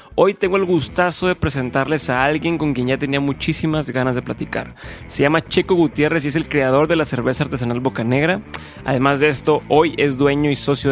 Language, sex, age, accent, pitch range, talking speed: Spanish, male, 20-39, Mexican, 130-155 Hz, 210 wpm